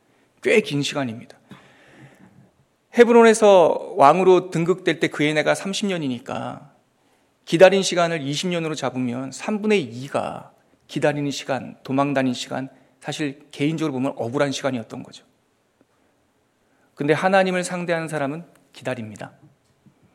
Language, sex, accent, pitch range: Korean, male, native, 140-195 Hz